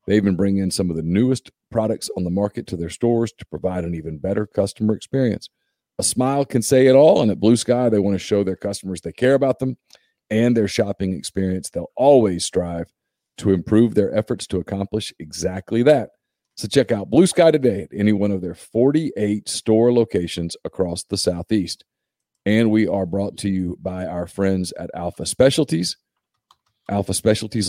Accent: American